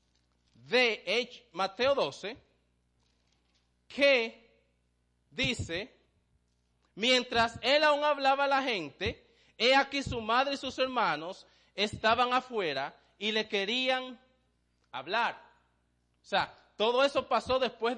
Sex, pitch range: male, 165-255 Hz